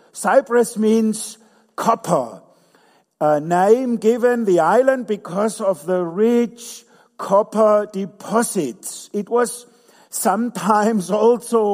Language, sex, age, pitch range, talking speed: English, male, 50-69, 190-230 Hz, 90 wpm